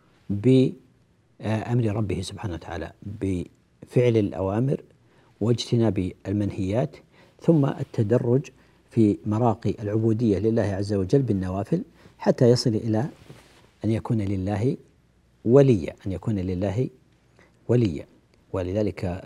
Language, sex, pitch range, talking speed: Arabic, male, 95-120 Hz, 90 wpm